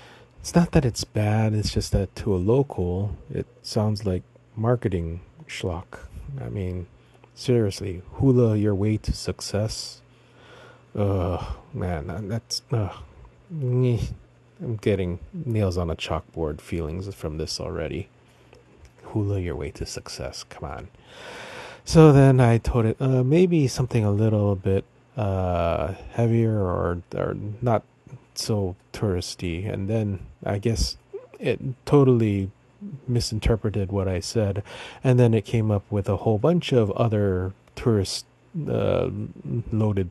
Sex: male